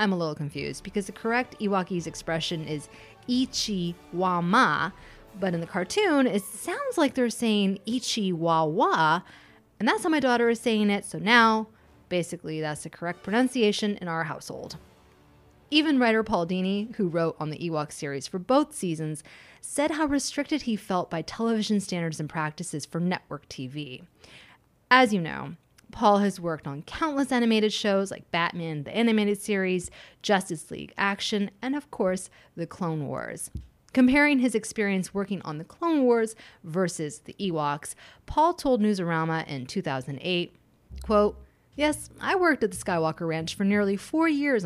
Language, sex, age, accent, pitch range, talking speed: English, female, 20-39, American, 165-235 Hz, 155 wpm